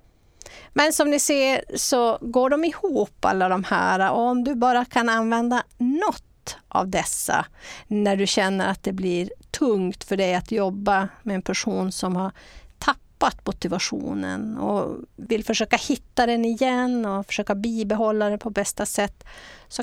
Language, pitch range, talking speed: English, 195-235 Hz, 155 wpm